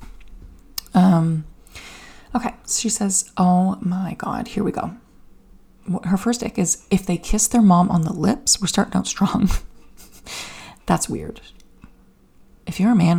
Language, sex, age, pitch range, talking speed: English, female, 30-49, 170-210 Hz, 155 wpm